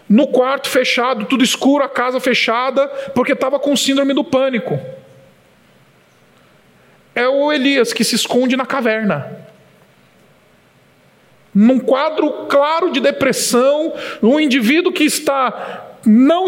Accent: Brazilian